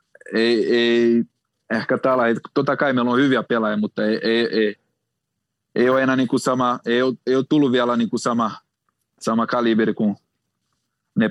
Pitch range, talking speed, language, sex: 105-120 Hz, 140 wpm, Finnish, male